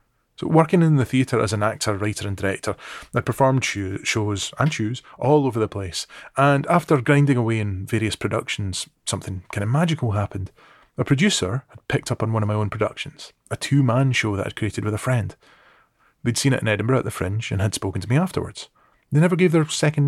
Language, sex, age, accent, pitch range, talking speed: English, male, 30-49, British, 105-135 Hz, 210 wpm